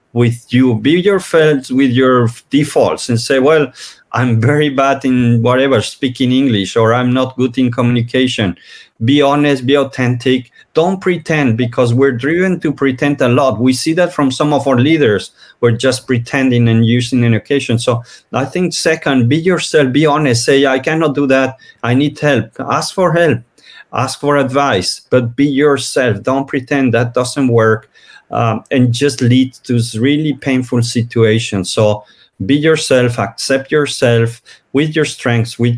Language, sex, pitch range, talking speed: Italian, male, 120-145 Hz, 165 wpm